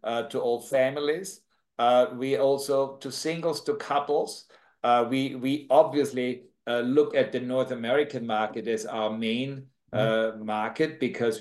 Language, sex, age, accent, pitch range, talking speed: English, male, 60-79, German, 115-140 Hz, 145 wpm